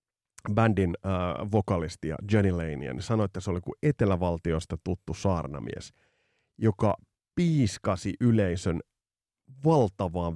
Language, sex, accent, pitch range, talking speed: Finnish, male, native, 100-140 Hz, 95 wpm